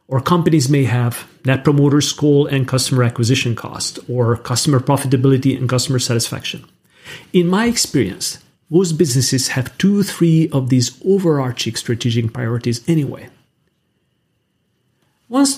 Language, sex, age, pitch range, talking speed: English, male, 40-59, 125-160 Hz, 125 wpm